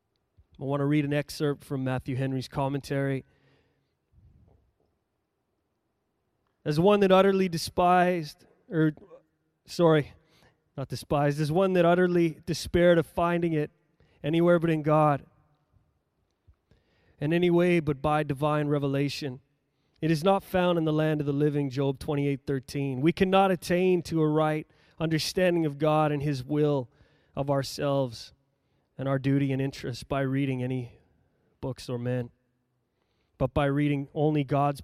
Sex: male